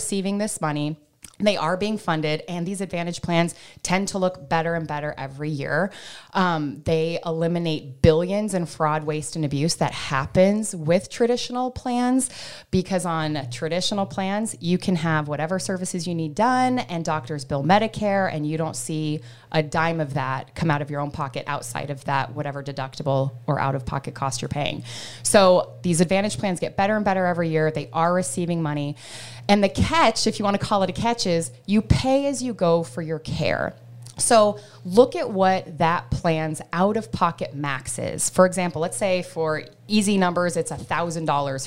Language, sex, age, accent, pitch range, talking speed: English, female, 20-39, American, 150-190 Hz, 180 wpm